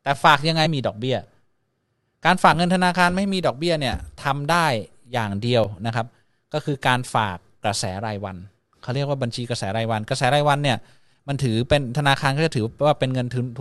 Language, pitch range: Thai, 115-145 Hz